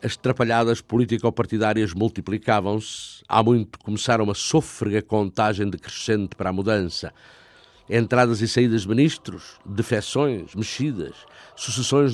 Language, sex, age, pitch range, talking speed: Portuguese, male, 50-69, 110-135 Hz, 110 wpm